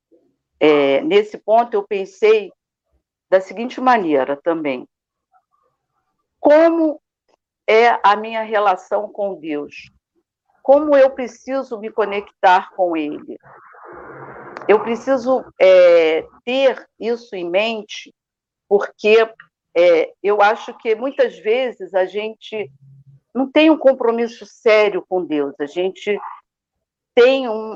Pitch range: 195-250 Hz